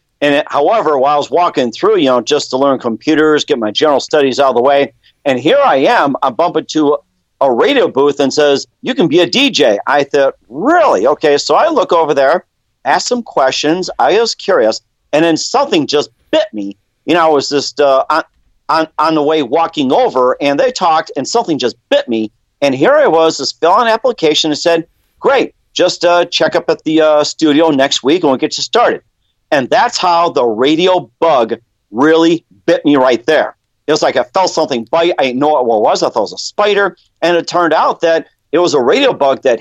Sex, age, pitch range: male, 50-69, 130-165 Hz